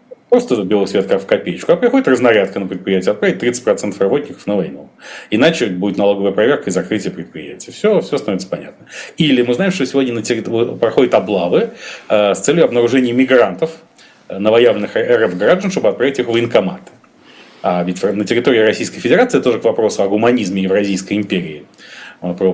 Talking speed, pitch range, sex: 155 wpm, 95-130 Hz, male